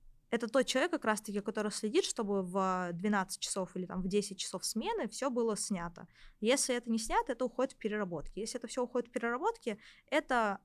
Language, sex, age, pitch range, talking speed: Russian, female, 20-39, 195-250 Hz, 195 wpm